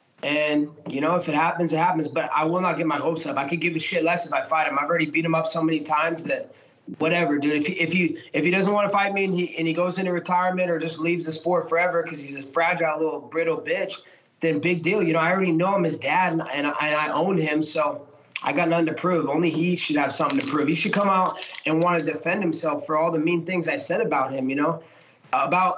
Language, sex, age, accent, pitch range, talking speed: English, male, 20-39, American, 150-175 Hz, 270 wpm